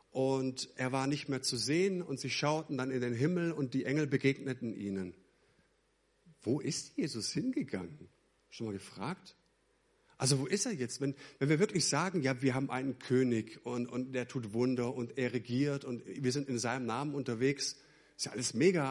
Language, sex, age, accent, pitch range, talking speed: German, male, 50-69, German, 130-165 Hz, 190 wpm